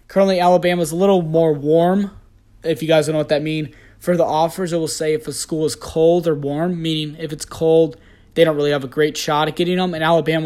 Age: 20-39